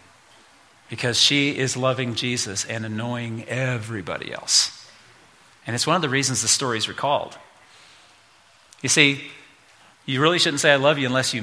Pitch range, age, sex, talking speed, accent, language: 115-140 Hz, 40-59, male, 160 wpm, American, English